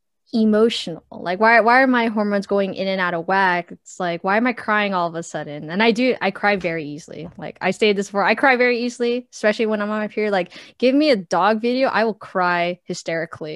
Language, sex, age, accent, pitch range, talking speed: English, female, 10-29, American, 175-225 Hz, 245 wpm